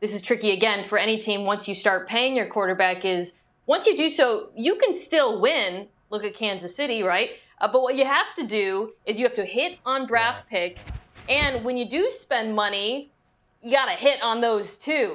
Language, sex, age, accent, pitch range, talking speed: English, female, 30-49, American, 215-265 Hz, 220 wpm